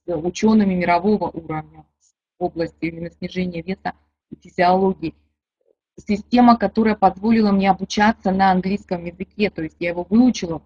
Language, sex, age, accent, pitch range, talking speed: Russian, female, 20-39, native, 170-205 Hz, 125 wpm